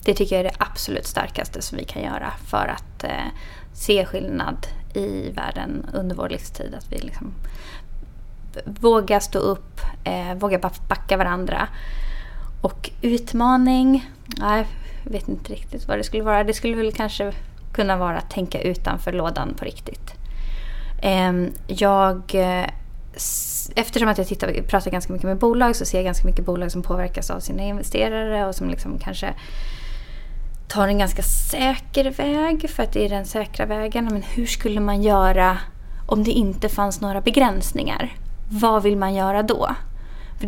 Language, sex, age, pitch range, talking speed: English, female, 20-39, 185-215 Hz, 150 wpm